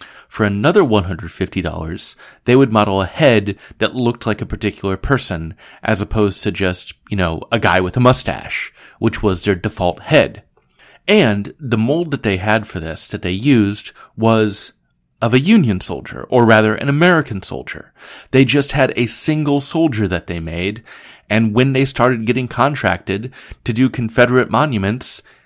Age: 30-49